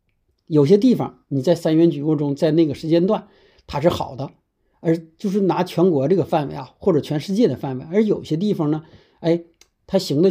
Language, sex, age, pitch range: Chinese, male, 60-79, 140-185 Hz